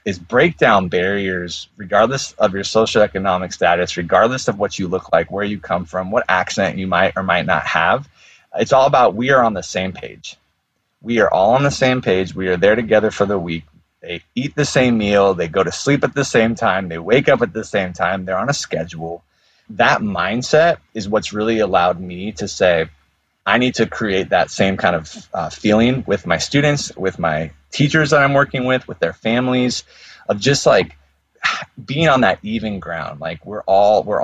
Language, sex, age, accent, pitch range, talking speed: English, male, 30-49, American, 90-125 Hz, 205 wpm